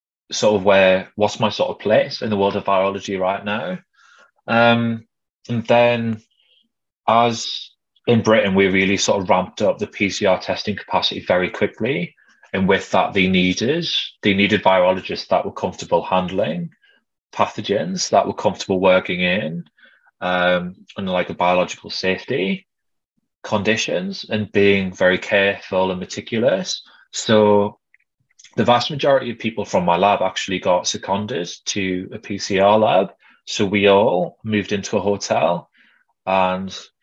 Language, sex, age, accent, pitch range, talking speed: English, male, 20-39, British, 95-115 Hz, 140 wpm